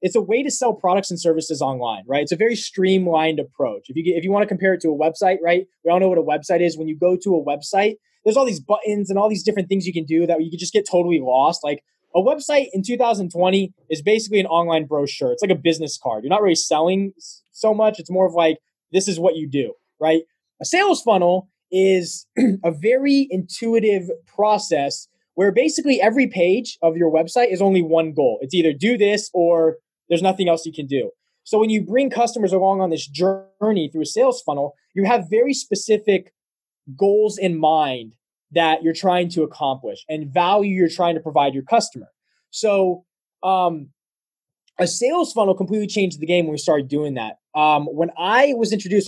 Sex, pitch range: male, 155-205 Hz